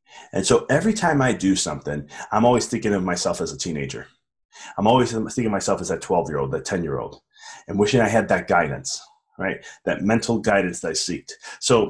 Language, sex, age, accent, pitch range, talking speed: English, male, 30-49, American, 100-120 Hz, 195 wpm